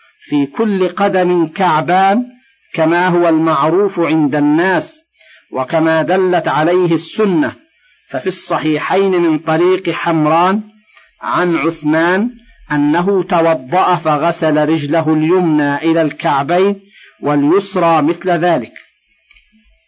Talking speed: 90 wpm